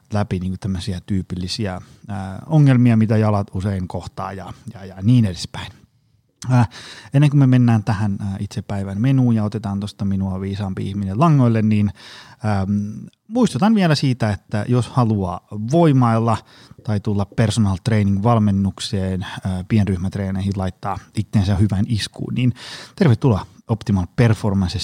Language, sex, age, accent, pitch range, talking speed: Finnish, male, 30-49, native, 100-125 Hz, 135 wpm